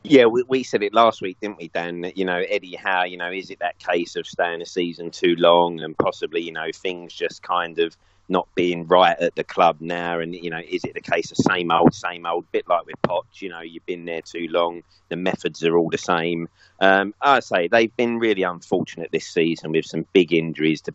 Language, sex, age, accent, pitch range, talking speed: English, male, 30-49, British, 85-95 Hz, 240 wpm